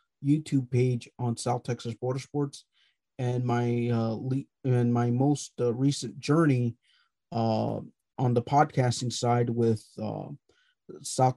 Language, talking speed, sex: English, 130 wpm, male